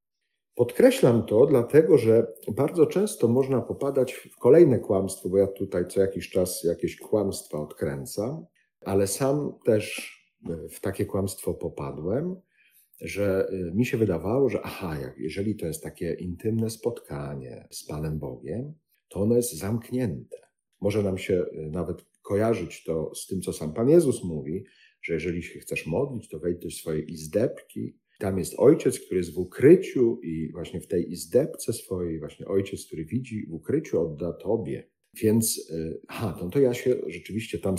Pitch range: 85-120 Hz